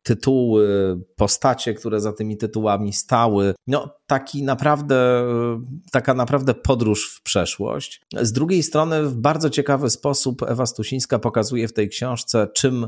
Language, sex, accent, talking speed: Polish, male, native, 135 wpm